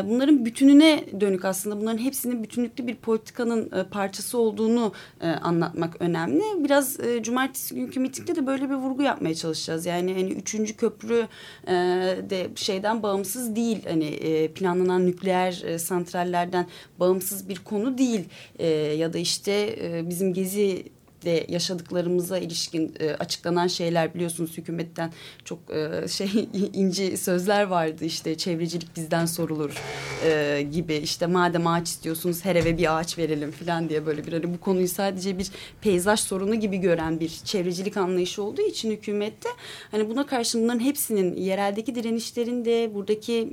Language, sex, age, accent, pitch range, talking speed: Turkish, female, 30-49, native, 170-220 Hz, 135 wpm